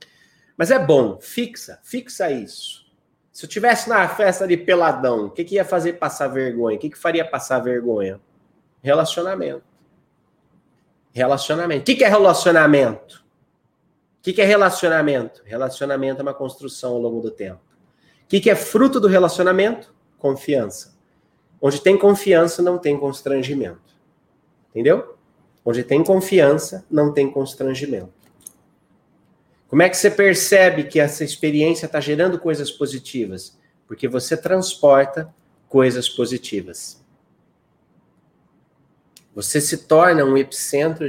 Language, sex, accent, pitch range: Portuguese, male, Brazilian, 130-175 Hz